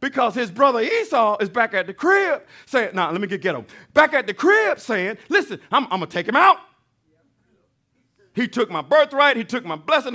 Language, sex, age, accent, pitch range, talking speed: English, male, 50-69, American, 200-280 Hz, 205 wpm